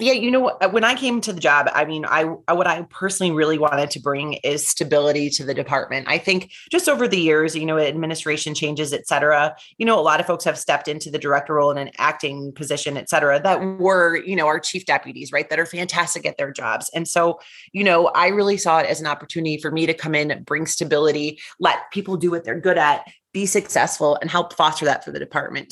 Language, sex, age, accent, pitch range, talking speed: English, female, 30-49, American, 150-185 Hz, 245 wpm